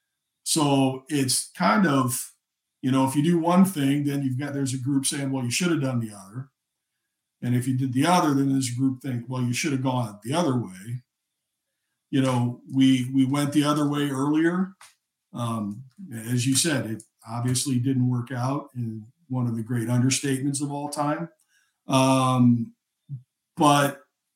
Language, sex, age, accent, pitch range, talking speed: English, male, 50-69, American, 125-145 Hz, 175 wpm